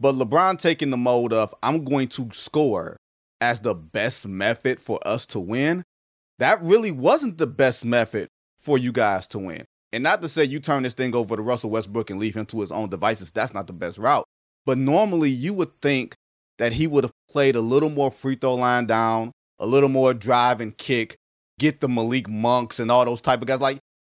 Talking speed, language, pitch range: 215 wpm, English, 120-155 Hz